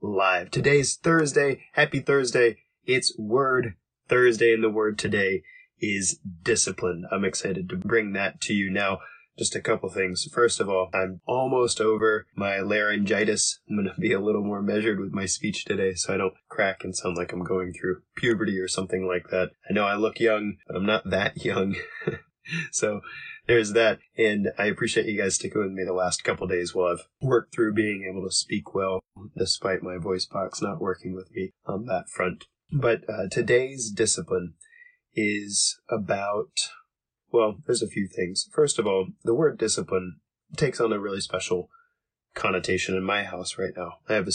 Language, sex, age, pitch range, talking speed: English, male, 20-39, 95-125 Hz, 185 wpm